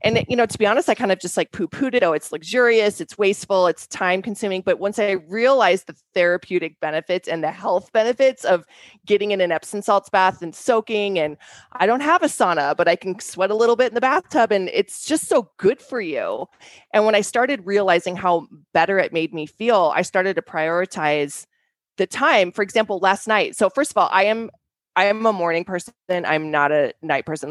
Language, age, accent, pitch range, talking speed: English, 20-39, American, 165-210 Hz, 220 wpm